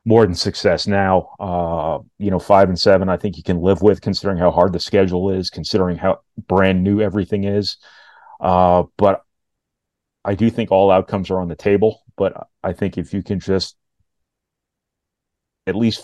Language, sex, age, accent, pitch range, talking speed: English, male, 30-49, American, 90-110 Hz, 180 wpm